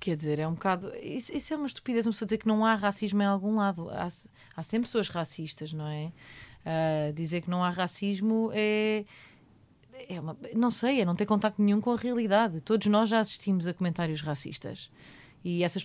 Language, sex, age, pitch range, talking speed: Portuguese, female, 30-49, 165-220 Hz, 205 wpm